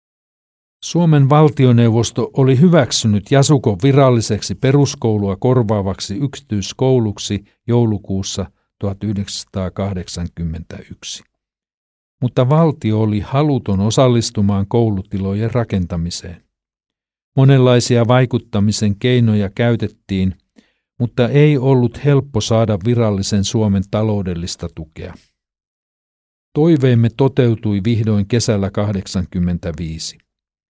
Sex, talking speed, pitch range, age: male, 70 wpm, 100-125 Hz, 50-69